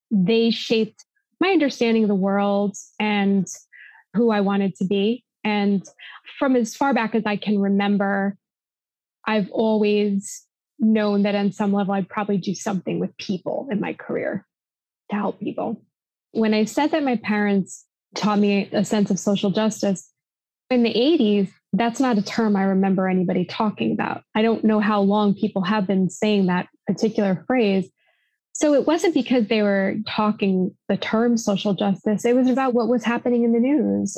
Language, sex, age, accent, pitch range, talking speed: English, female, 20-39, American, 200-230 Hz, 170 wpm